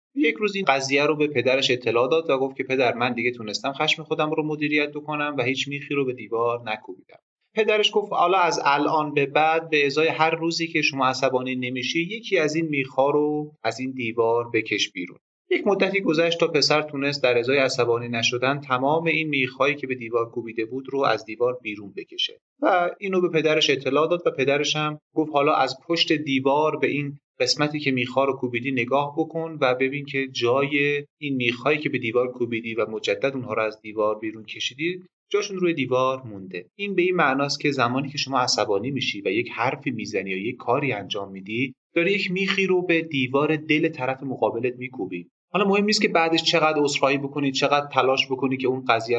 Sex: male